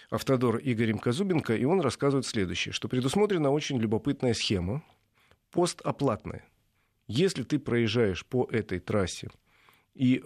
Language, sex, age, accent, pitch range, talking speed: Russian, male, 40-59, native, 105-150 Hz, 115 wpm